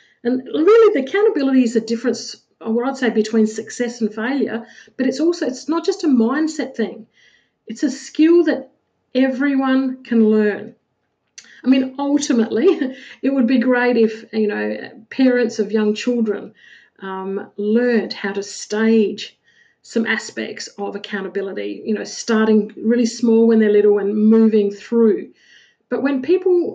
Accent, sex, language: Australian, female, English